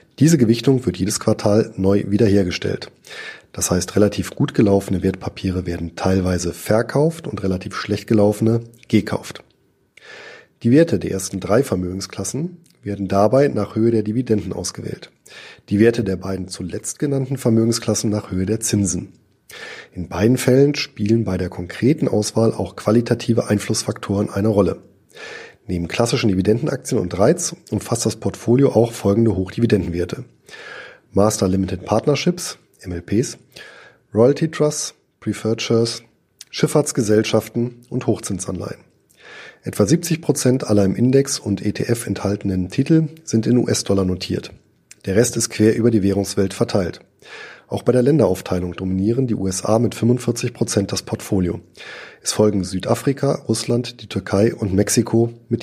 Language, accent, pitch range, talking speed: German, German, 100-120 Hz, 135 wpm